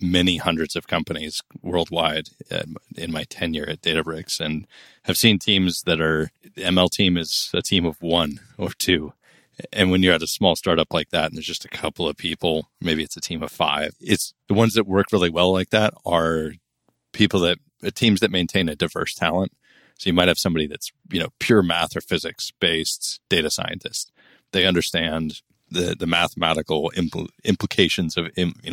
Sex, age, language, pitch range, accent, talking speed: male, 30-49, English, 80-90 Hz, American, 185 wpm